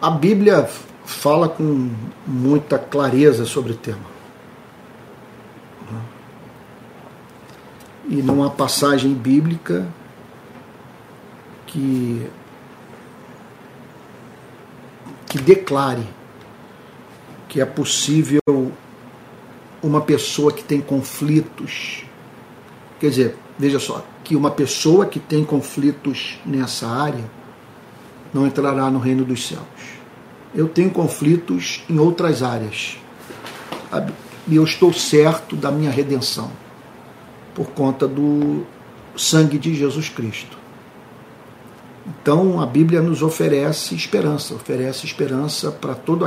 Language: Portuguese